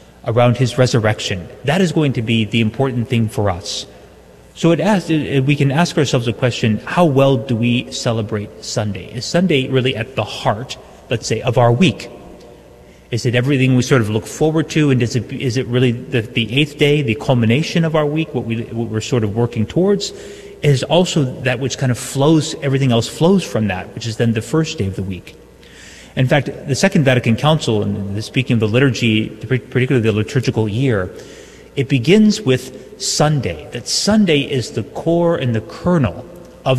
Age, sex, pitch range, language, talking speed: 30-49, male, 110-140 Hz, English, 190 wpm